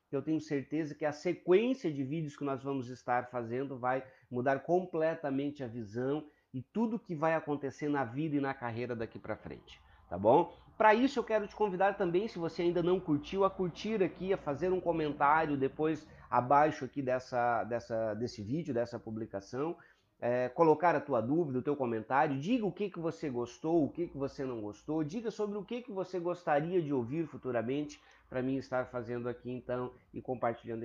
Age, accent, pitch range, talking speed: 30-49, Brazilian, 125-180 Hz, 195 wpm